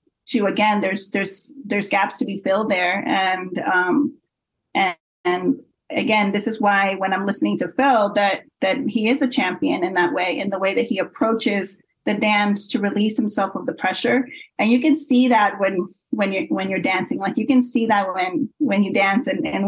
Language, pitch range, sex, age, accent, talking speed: English, 200-255 Hz, female, 30-49, American, 205 wpm